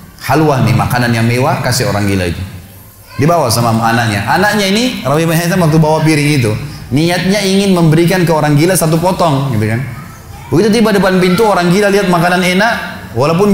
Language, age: Indonesian, 20-39